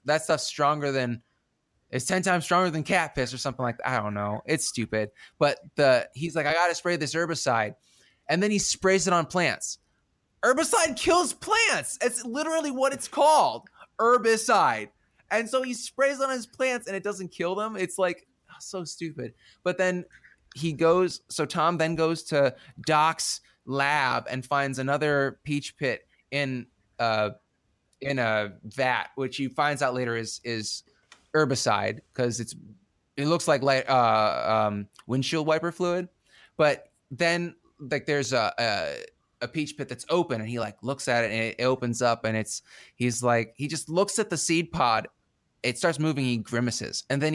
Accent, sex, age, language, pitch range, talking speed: American, male, 20-39, English, 125-175 Hz, 180 wpm